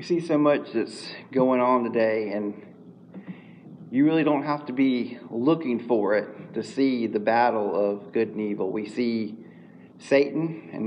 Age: 40-59